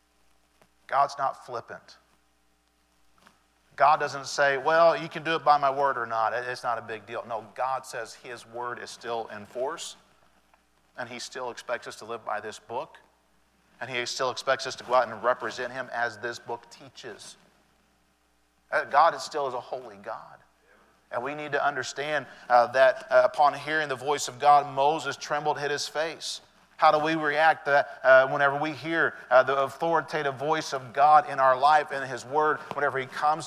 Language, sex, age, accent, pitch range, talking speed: English, male, 40-59, American, 130-155 Hz, 185 wpm